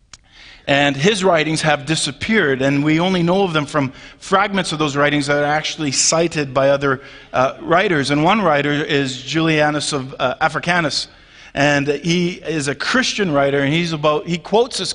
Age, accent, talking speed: 50-69, American, 175 wpm